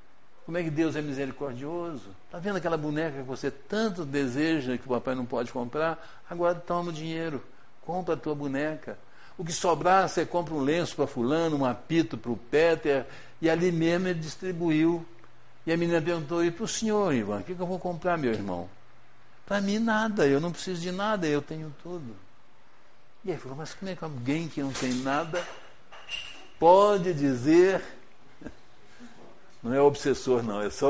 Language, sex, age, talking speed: Portuguese, male, 60-79, 185 wpm